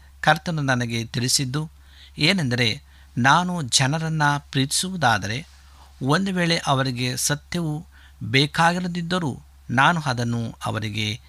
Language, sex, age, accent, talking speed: Kannada, male, 50-69, native, 80 wpm